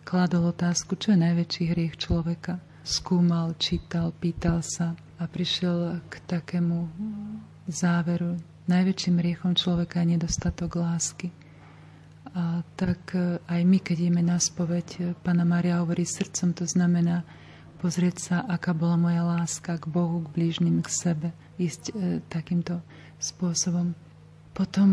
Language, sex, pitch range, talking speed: Slovak, female, 170-180 Hz, 125 wpm